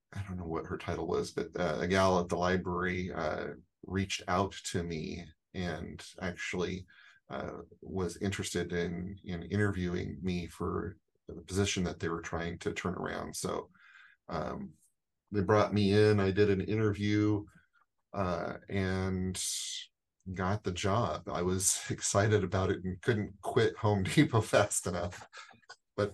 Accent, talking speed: American, 150 wpm